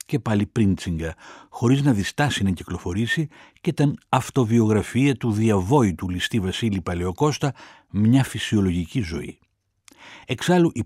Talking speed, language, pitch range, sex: 115 wpm, Greek, 100-130 Hz, male